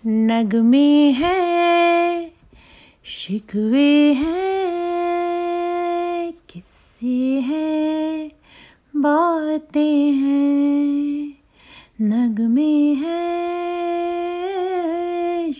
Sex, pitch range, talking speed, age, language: female, 250-305 Hz, 40 wpm, 30-49, Hindi